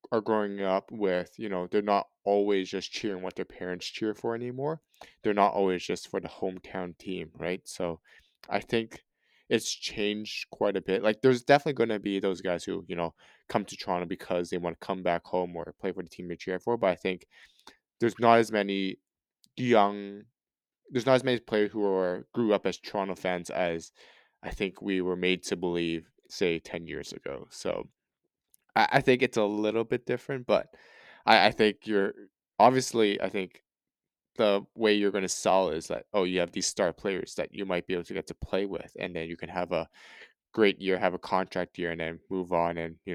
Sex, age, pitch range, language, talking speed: male, 20-39, 90-110 Hz, English, 215 wpm